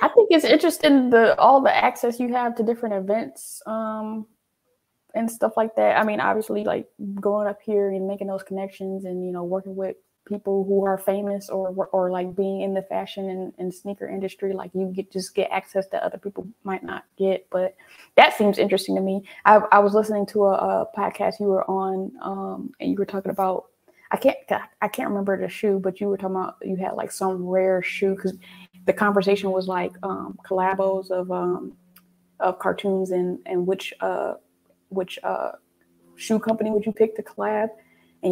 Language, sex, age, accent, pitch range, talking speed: English, female, 20-39, American, 190-215 Hz, 200 wpm